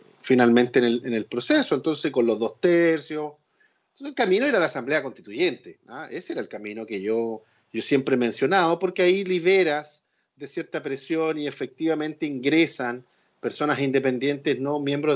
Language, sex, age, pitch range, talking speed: Spanish, male, 40-59, 130-185 Hz, 160 wpm